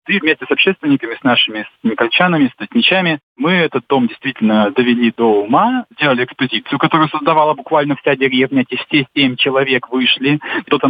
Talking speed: 165 wpm